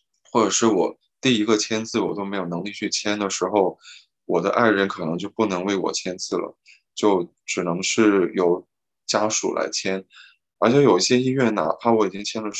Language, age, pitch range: Chinese, 20-39, 100-115 Hz